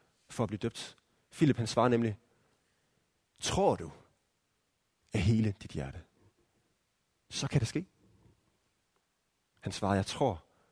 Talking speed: 125 wpm